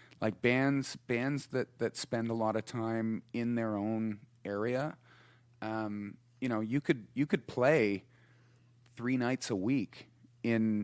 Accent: American